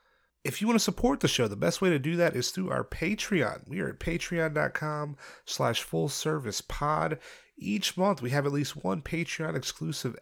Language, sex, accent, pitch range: English, male, American, 140-195 Hz